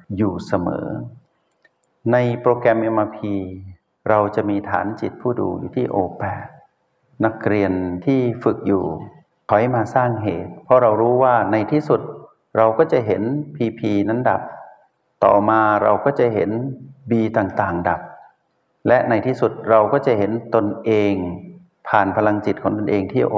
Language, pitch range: Thai, 100-120 Hz